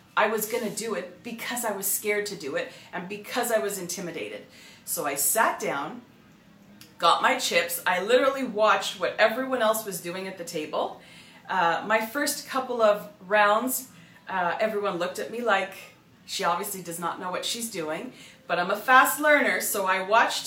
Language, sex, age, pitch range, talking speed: English, female, 30-49, 195-250 Hz, 190 wpm